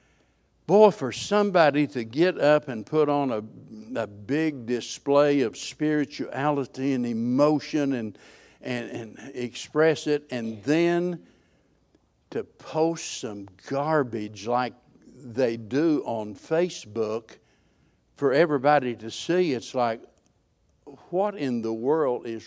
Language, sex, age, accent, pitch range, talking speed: English, male, 60-79, American, 125-160 Hz, 120 wpm